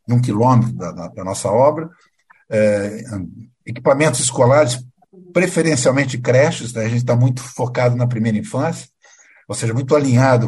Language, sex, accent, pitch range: Portuguese, male, Brazilian, 115-145 Hz